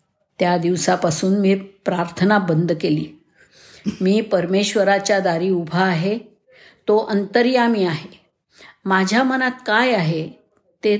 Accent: native